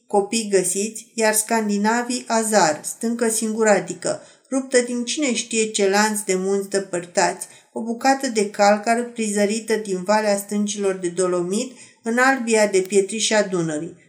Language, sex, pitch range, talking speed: Romanian, female, 200-235 Hz, 130 wpm